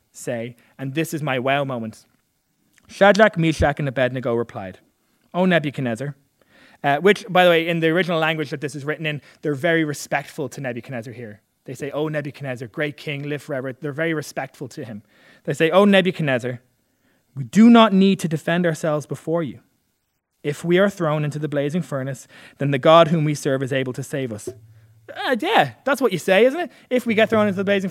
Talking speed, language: 200 wpm, English